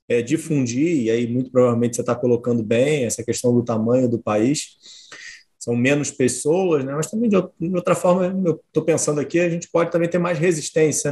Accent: Brazilian